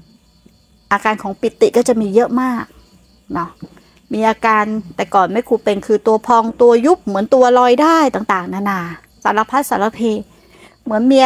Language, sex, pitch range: Thai, female, 200-270 Hz